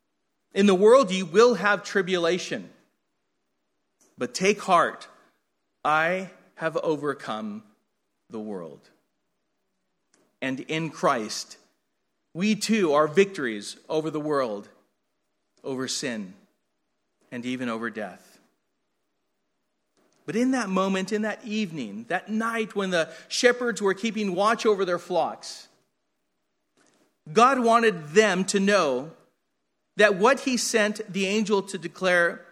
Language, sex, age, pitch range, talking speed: English, male, 40-59, 140-210 Hz, 115 wpm